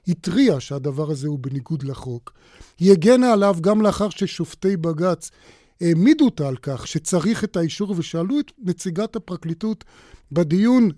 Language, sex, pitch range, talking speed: Hebrew, male, 155-200 Hz, 135 wpm